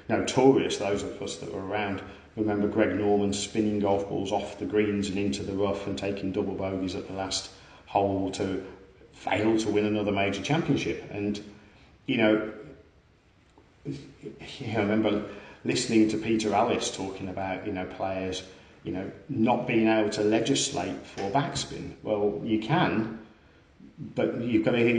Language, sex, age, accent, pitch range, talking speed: English, male, 40-59, British, 95-110 Hz, 160 wpm